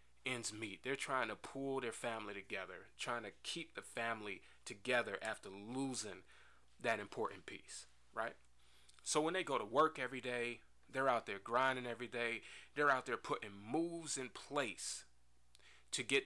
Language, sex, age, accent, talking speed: English, male, 30-49, American, 160 wpm